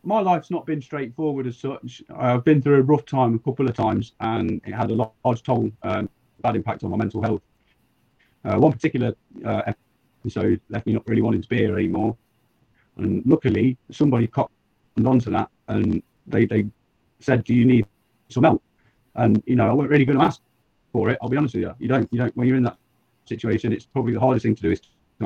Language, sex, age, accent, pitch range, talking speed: English, male, 30-49, British, 110-125 Hz, 220 wpm